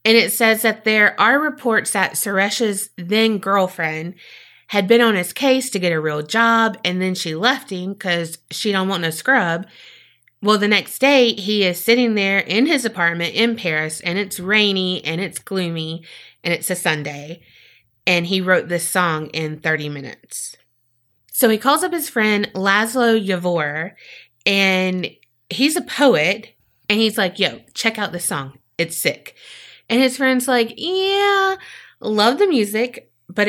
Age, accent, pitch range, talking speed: 30-49, American, 165-220 Hz, 165 wpm